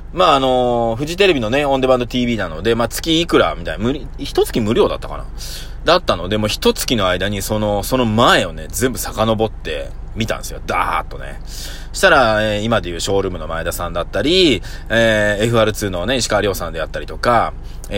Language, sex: Japanese, male